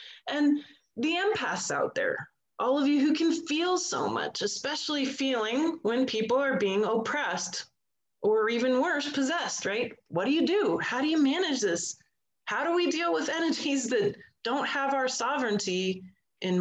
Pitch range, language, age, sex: 205-295 Hz, English, 30-49, female